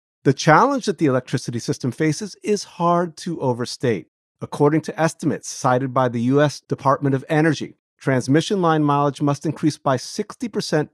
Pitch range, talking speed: 125-170 Hz, 155 wpm